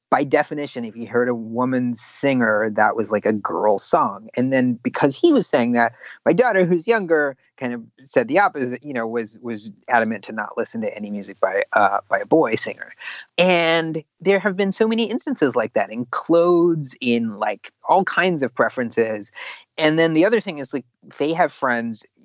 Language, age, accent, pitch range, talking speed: English, 30-49, American, 120-165 Hz, 200 wpm